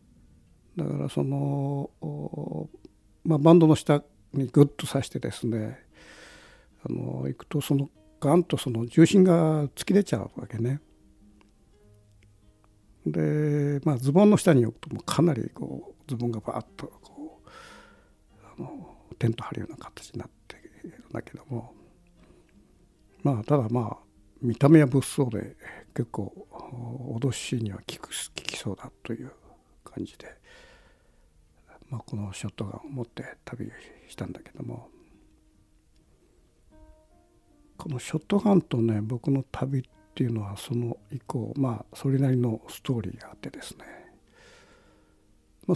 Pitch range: 105-140 Hz